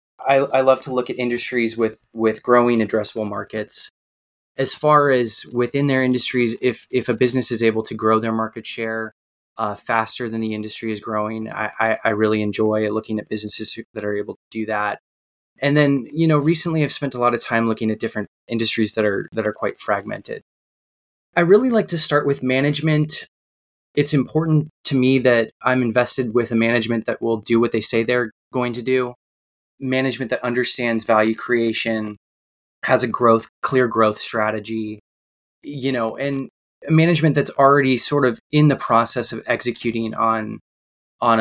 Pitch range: 110-130 Hz